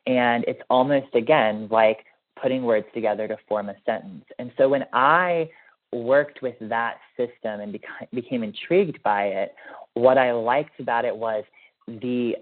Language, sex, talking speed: English, male, 155 wpm